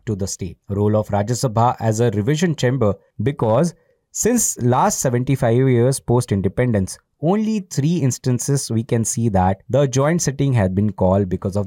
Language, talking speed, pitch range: English, 170 wpm, 105-135 Hz